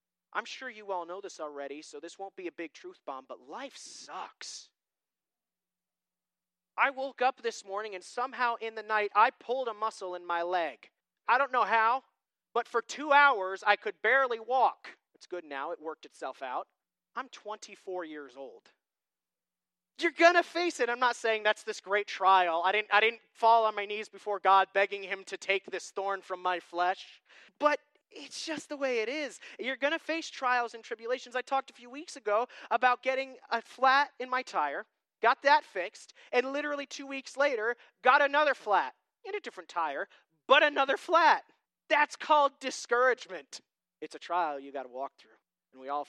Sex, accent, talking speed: male, American, 190 wpm